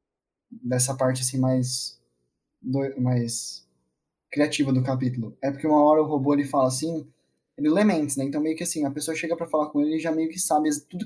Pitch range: 130-155 Hz